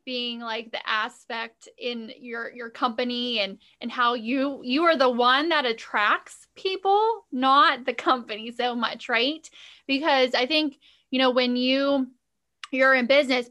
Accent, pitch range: American, 235-280 Hz